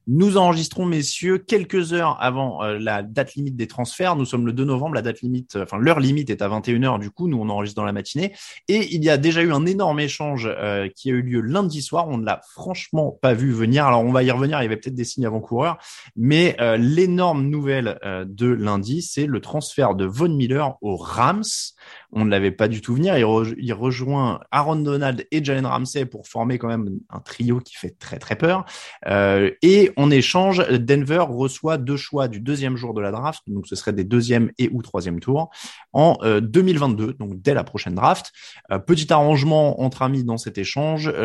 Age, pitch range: 20-39, 110-150 Hz